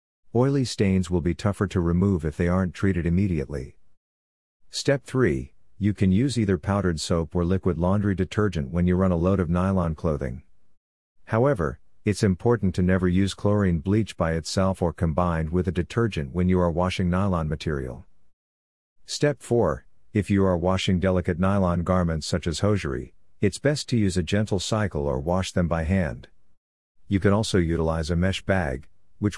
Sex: male